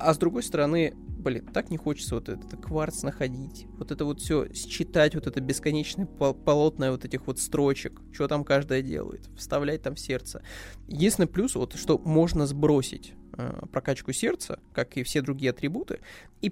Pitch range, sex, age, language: 130-170 Hz, male, 20-39, Russian